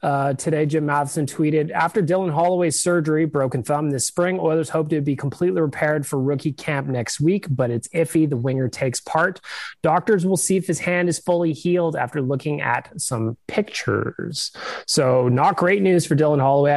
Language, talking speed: English, 185 wpm